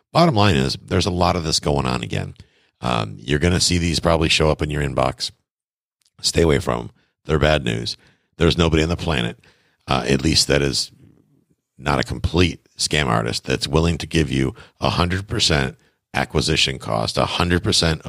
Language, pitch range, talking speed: English, 70-90 Hz, 180 wpm